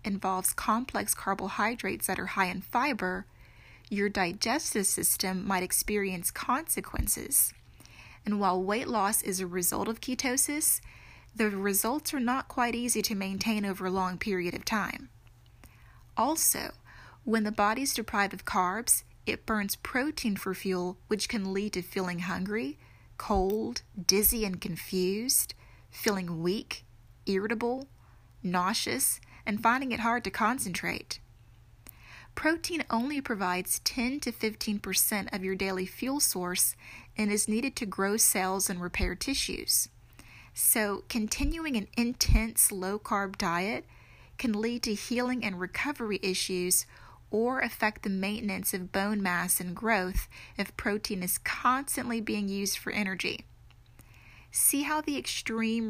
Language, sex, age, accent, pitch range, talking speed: English, female, 30-49, American, 185-230 Hz, 135 wpm